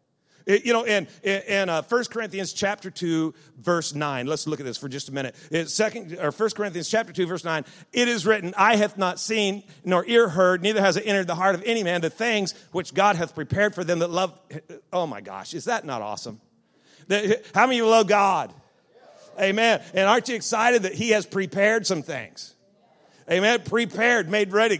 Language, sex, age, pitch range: English, male, 40-59, 175-225 Hz